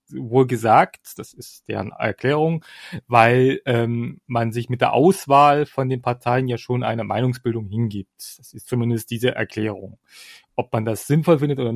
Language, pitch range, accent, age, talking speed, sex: German, 120-150 Hz, German, 30-49, 165 wpm, male